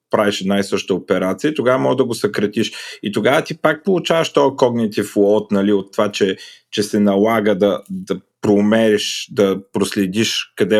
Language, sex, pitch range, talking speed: Bulgarian, male, 105-135 Hz, 170 wpm